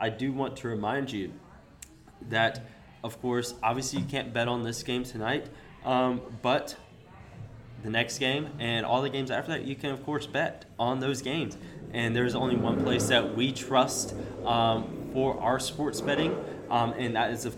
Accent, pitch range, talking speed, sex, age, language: American, 110-130 Hz, 185 wpm, male, 20-39, English